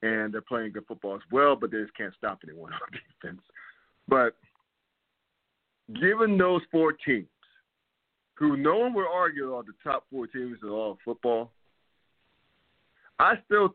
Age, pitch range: 50-69, 120-150 Hz